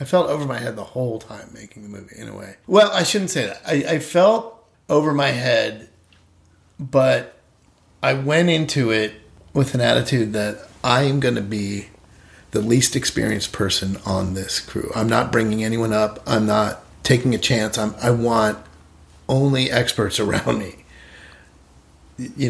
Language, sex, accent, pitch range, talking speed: English, male, American, 105-130 Hz, 170 wpm